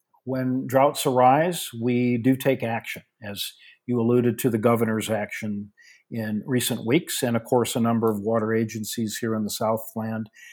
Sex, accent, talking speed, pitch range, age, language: male, American, 165 wpm, 115-150 Hz, 50-69, English